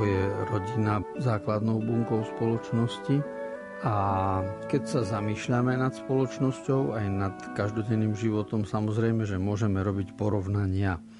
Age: 50-69